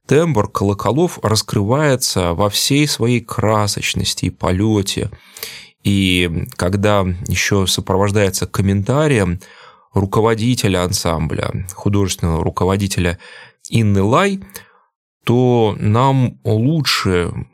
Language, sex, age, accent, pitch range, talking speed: Russian, male, 20-39, native, 95-120 Hz, 80 wpm